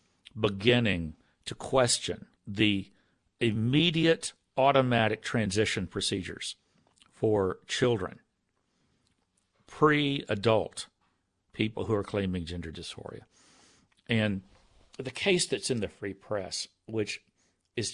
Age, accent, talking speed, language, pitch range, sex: 60-79, American, 90 wpm, English, 95-130 Hz, male